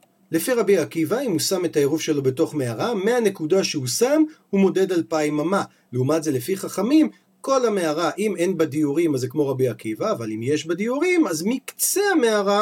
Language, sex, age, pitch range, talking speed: Hebrew, male, 40-59, 140-205 Hz, 195 wpm